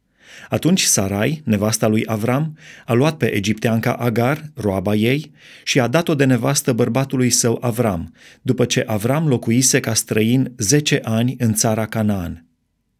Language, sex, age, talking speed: Romanian, male, 30-49, 145 wpm